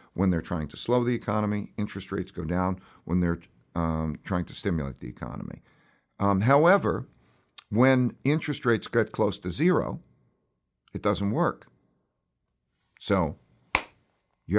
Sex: male